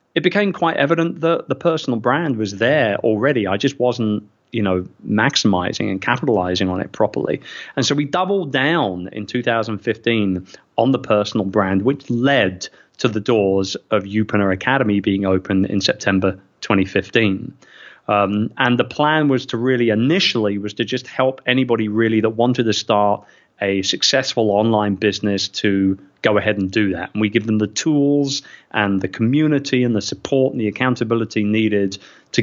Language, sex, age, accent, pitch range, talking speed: English, male, 30-49, British, 100-125 Hz, 170 wpm